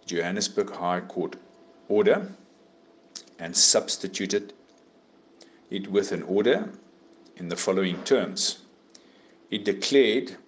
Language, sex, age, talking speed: English, male, 50-69, 90 wpm